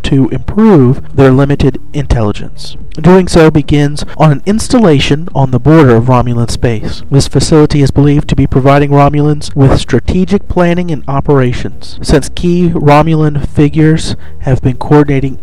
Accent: American